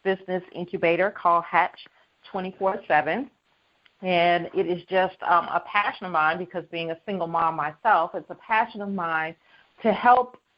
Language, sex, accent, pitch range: English, female, American, 165-200 Hz